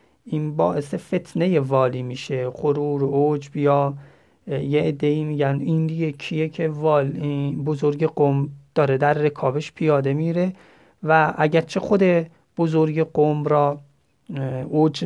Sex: male